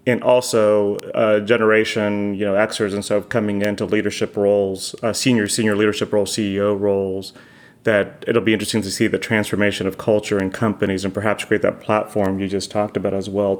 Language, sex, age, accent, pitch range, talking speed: English, male, 30-49, American, 105-120 Hz, 190 wpm